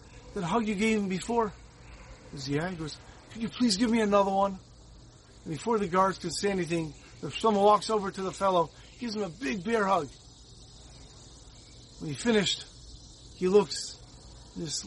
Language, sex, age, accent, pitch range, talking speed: English, male, 40-59, American, 140-185 Hz, 180 wpm